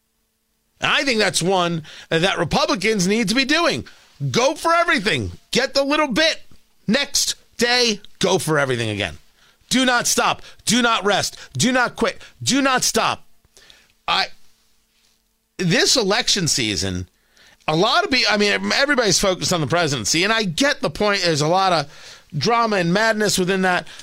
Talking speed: 160 wpm